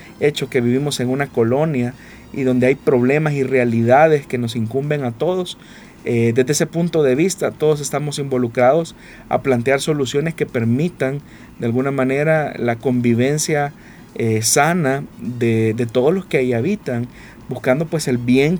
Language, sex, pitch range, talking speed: Spanish, male, 120-145 Hz, 160 wpm